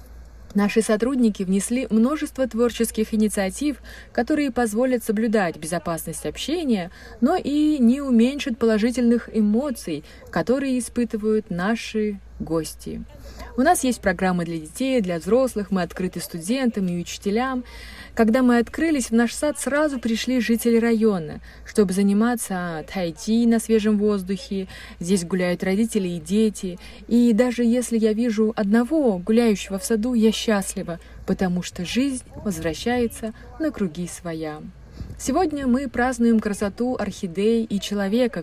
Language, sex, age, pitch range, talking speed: Russian, female, 20-39, 195-245 Hz, 125 wpm